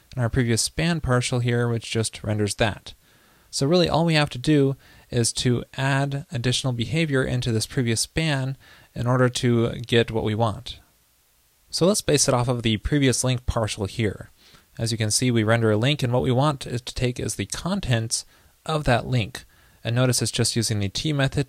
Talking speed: 205 wpm